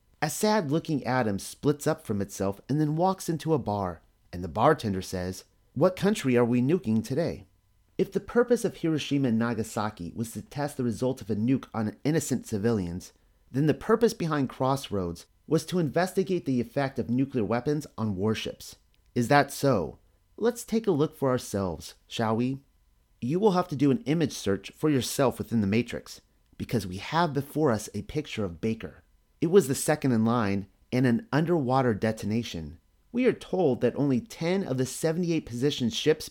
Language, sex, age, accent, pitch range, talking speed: English, male, 30-49, American, 105-150 Hz, 180 wpm